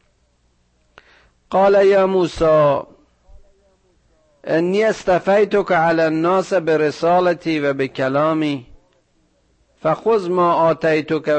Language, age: Persian, 50-69